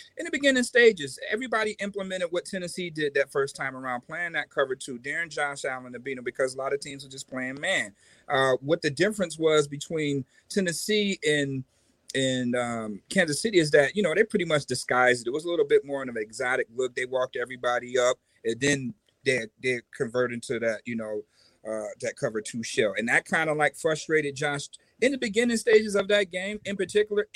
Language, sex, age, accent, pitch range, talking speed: English, male, 40-59, American, 140-200 Hz, 215 wpm